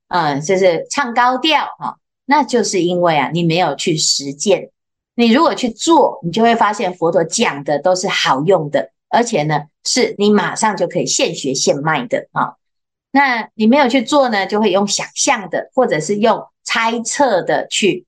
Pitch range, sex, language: 175-255 Hz, female, Chinese